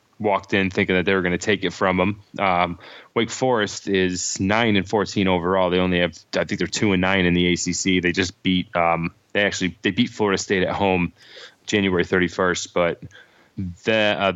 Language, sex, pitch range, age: English, male, 90-100 Hz, 20-39